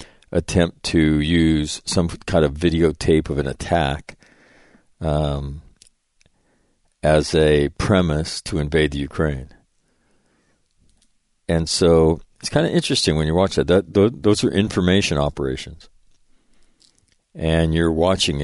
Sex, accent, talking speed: male, American, 115 wpm